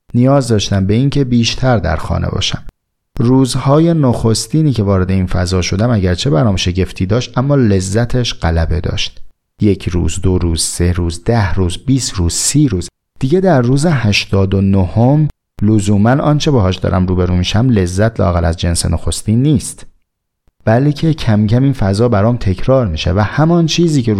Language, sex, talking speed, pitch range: Persian, male, 160 wpm, 90-120 Hz